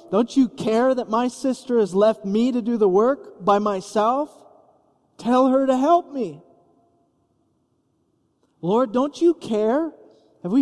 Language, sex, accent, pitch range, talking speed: English, male, American, 190-265 Hz, 145 wpm